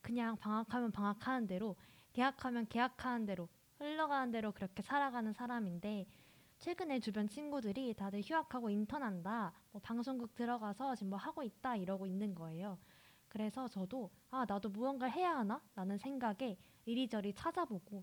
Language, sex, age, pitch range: Korean, female, 20-39, 195-260 Hz